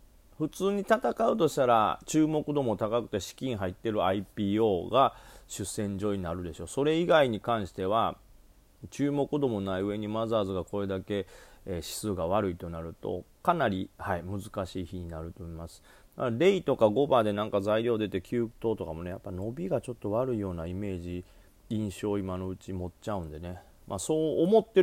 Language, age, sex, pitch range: Japanese, 40-59, male, 90-120 Hz